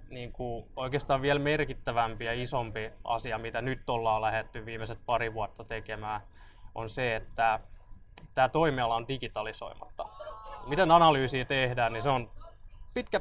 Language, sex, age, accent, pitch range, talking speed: Finnish, male, 20-39, native, 110-130 Hz, 135 wpm